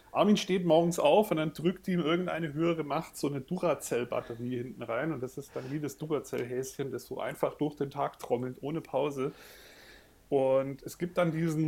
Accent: German